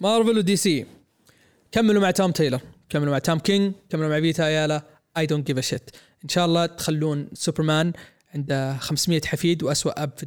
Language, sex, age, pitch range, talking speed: Arabic, male, 20-39, 150-195 Hz, 175 wpm